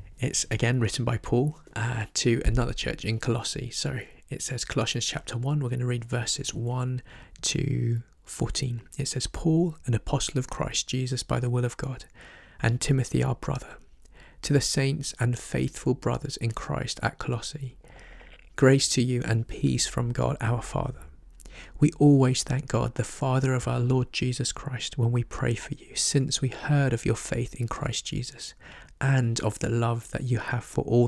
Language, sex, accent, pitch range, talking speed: English, male, British, 115-135 Hz, 185 wpm